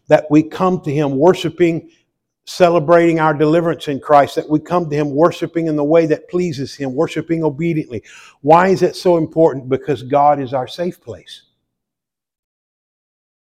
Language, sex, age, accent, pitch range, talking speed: English, male, 50-69, American, 135-165 Hz, 160 wpm